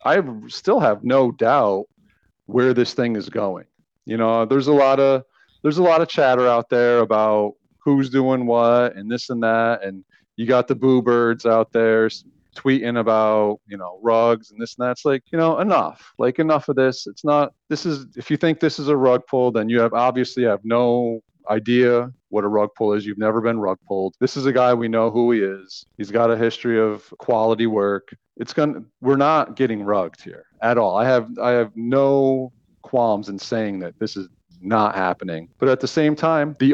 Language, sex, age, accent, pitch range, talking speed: English, male, 40-59, American, 115-140 Hz, 210 wpm